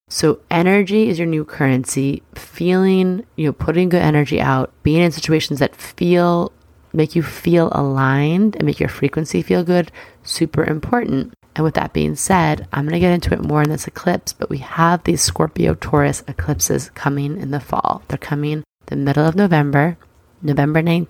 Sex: female